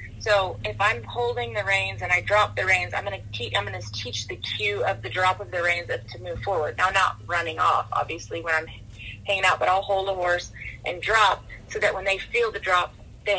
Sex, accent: female, American